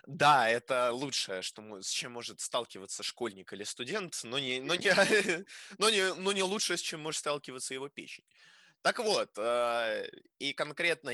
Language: Russian